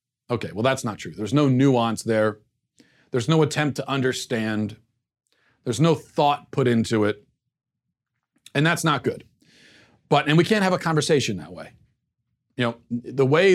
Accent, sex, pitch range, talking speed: American, male, 115-145 Hz, 165 wpm